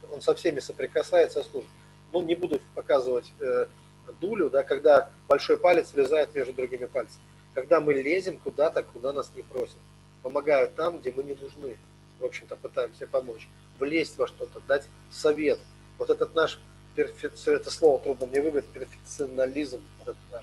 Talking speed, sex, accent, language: 150 wpm, male, native, Russian